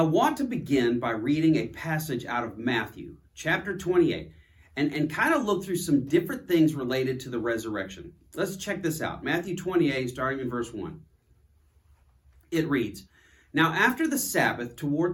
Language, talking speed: English, 170 wpm